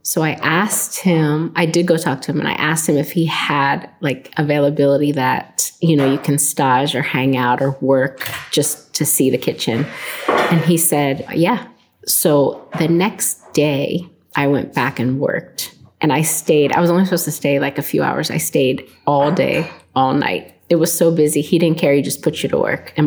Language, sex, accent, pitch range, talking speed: English, female, American, 140-165 Hz, 210 wpm